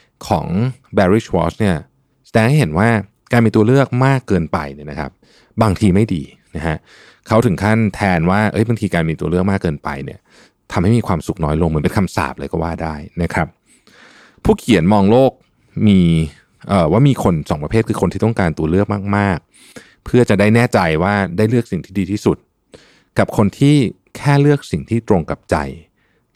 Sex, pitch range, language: male, 85-115 Hz, Thai